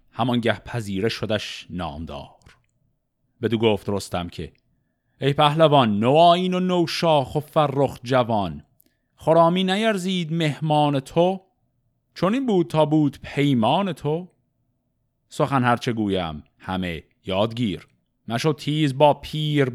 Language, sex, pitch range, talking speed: Persian, male, 115-160 Hz, 110 wpm